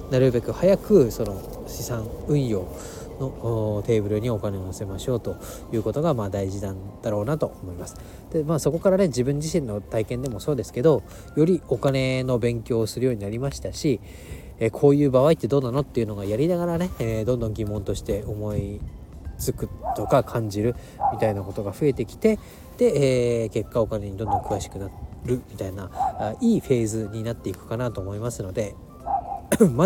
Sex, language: male, Japanese